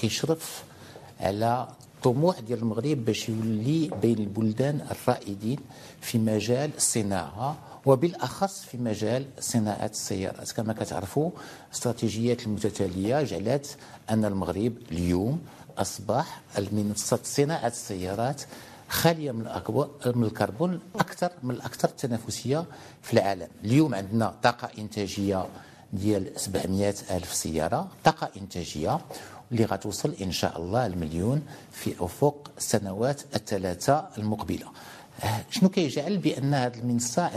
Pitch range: 105-145 Hz